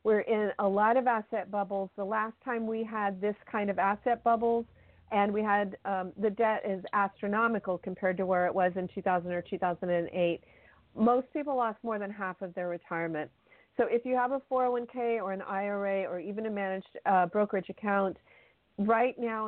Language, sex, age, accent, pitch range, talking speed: English, female, 40-59, American, 185-225 Hz, 190 wpm